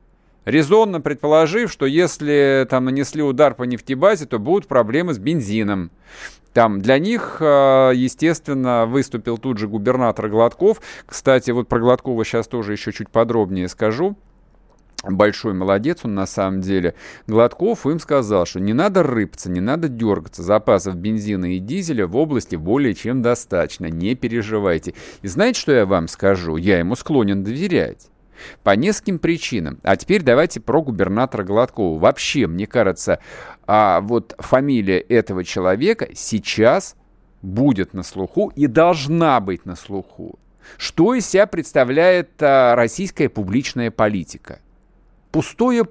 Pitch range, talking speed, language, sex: 100-150 Hz, 135 wpm, Russian, male